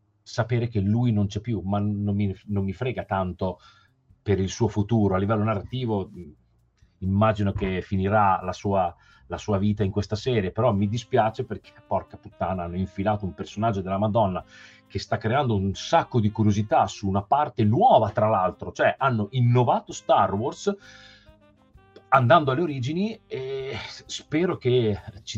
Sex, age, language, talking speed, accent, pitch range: male, 40-59, Italian, 160 wpm, native, 100-120 Hz